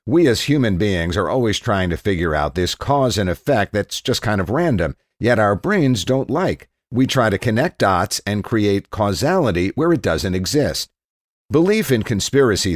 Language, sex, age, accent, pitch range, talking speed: English, male, 50-69, American, 90-130 Hz, 185 wpm